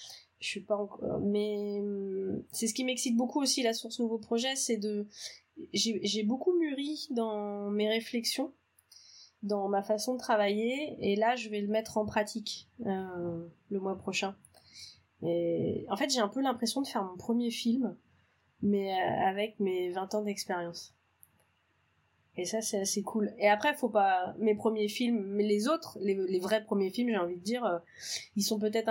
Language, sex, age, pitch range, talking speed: French, female, 20-39, 190-235 Hz, 175 wpm